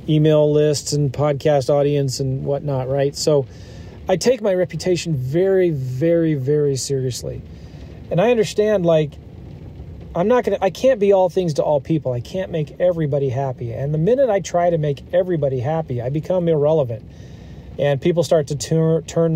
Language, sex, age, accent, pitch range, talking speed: English, male, 40-59, American, 135-180 Hz, 170 wpm